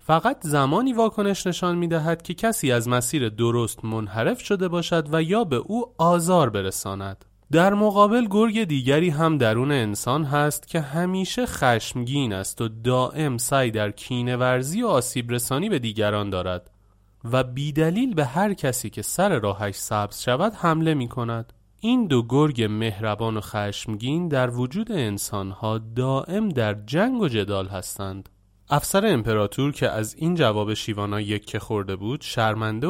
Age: 30-49